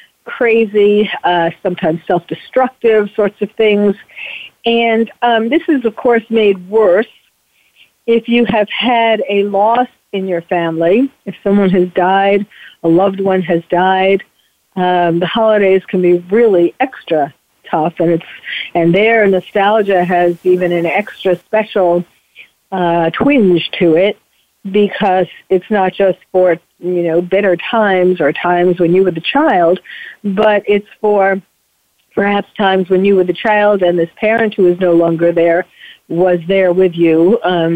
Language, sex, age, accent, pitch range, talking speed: English, female, 50-69, American, 175-220 Hz, 150 wpm